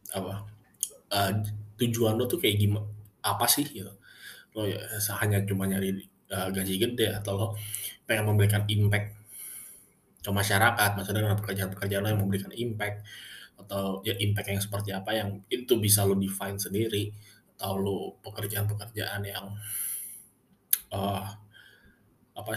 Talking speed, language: 130 wpm, Indonesian